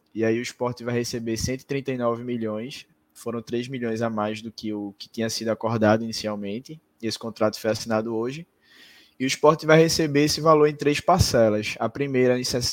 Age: 20-39